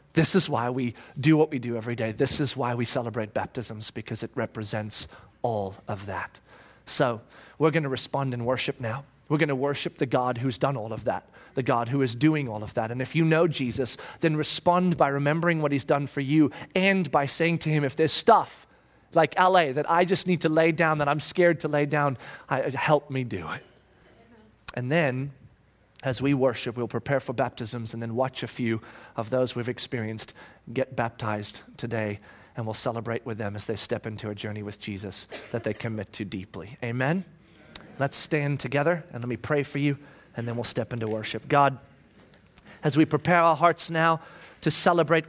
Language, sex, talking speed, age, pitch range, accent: English, male, 205 wpm, 30-49, 120-155 Hz, American